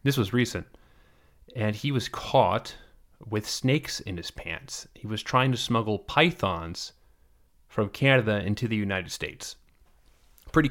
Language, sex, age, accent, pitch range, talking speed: English, male, 30-49, American, 100-125 Hz, 140 wpm